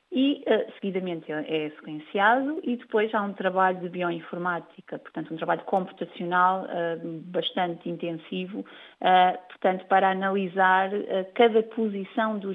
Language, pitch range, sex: Portuguese, 160-195 Hz, female